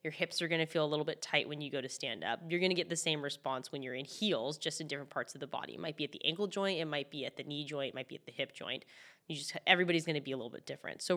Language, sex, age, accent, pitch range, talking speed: English, female, 10-29, American, 145-165 Hz, 355 wpm